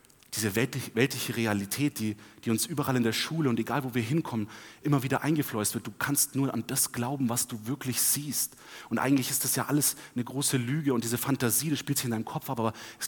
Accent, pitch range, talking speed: German, 110-145 Hz, 230 wpm